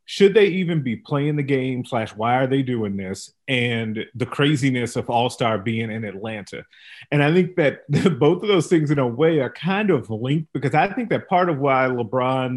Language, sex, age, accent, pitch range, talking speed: English, male, 30-49, American, 115-150 Hz, 210 wpm